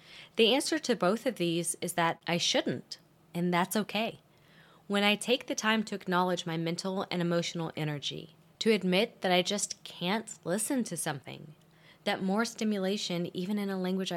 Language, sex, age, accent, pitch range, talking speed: English, female, 20-39, American, 165-200 Hz, 175 wpm